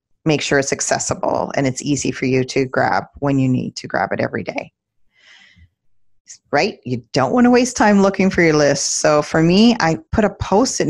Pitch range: 140-180 Hz